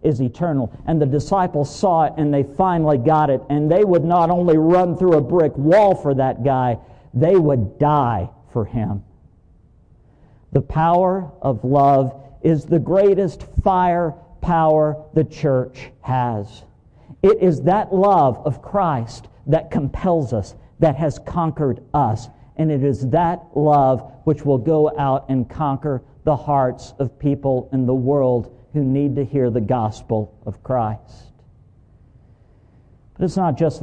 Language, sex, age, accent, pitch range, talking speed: English, male, 50-69, American, 125-170 Hz, 150 wpm